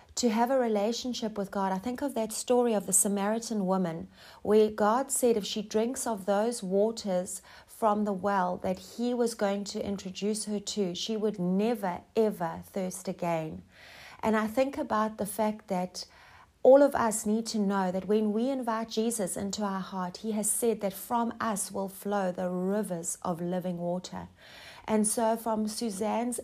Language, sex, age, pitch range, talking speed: English, female, 30-49, 185-225 Hz, 180 wpm